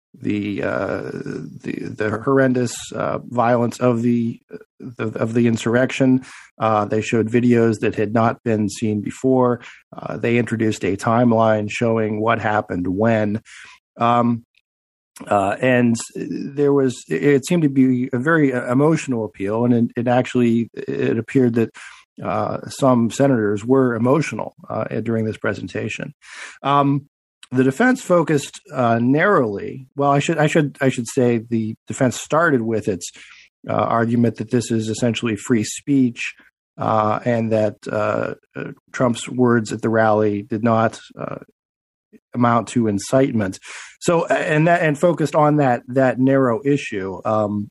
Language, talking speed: English, 145 wpm